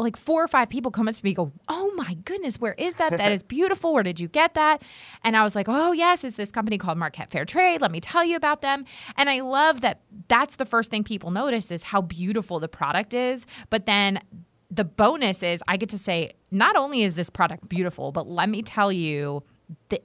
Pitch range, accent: 175-230 Hz, American